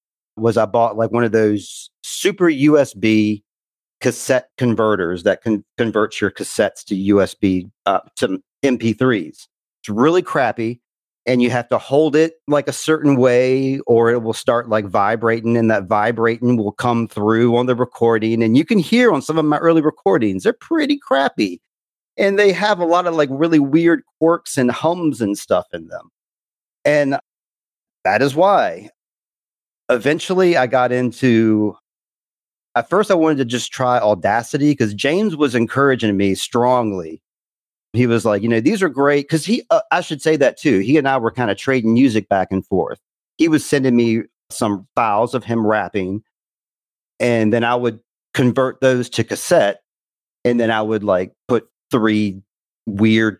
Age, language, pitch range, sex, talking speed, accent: 40-59, English, 110-145 Hz, male, 170 wpm, American